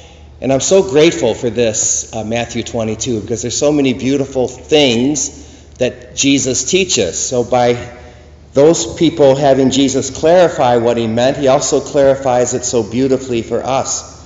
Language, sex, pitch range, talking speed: English, male, 115-140 Hz, 150 wpm